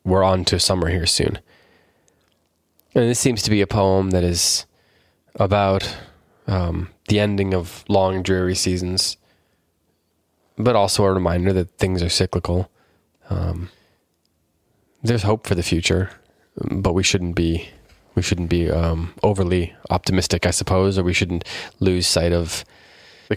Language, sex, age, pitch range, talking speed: English, male, 20-39, 85-100 Hz, 145 wpm